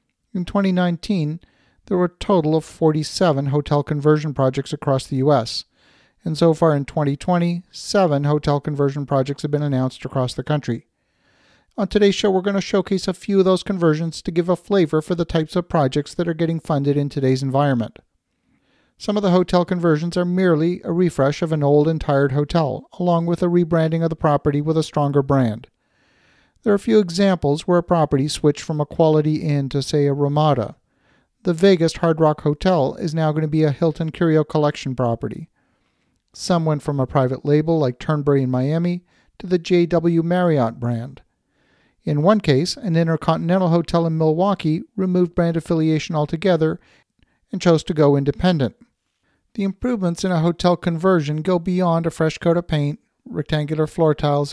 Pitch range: 145-175 Hz